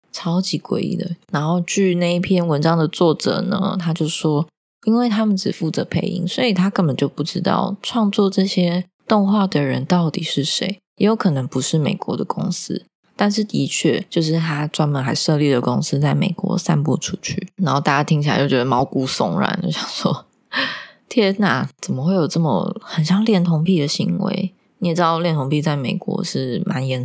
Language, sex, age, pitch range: Chinese, female, 20-39, 150-195 Hz